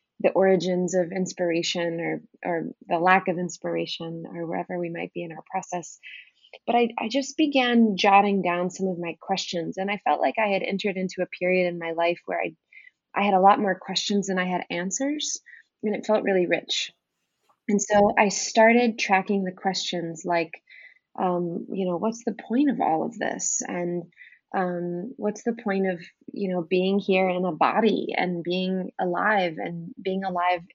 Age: 20-39